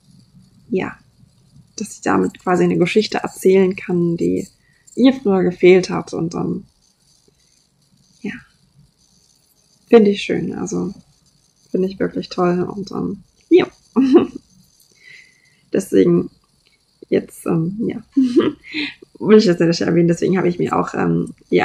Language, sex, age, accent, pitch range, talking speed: German, female, 20-39, German, 170-245 Hz, 115 wpm